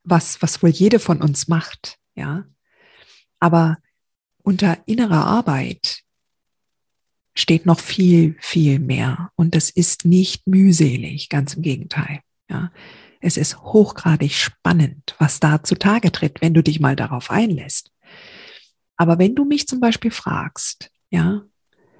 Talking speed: 130 wpm